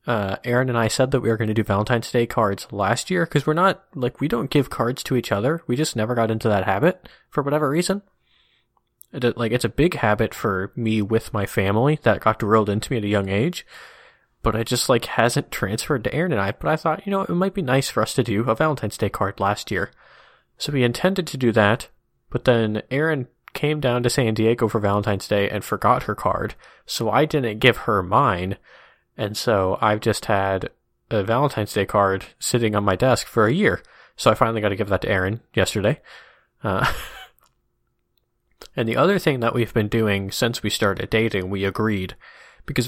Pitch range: 105-130 Hz